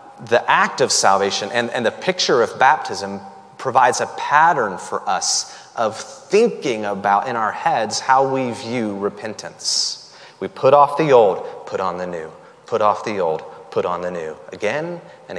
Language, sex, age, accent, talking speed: English, male, 30-49, American, 170 wpm